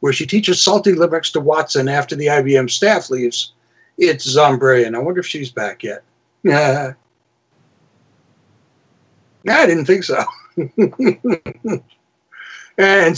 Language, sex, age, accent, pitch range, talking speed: English, male, 60-79, American, 135-180 Hz, 120 wpm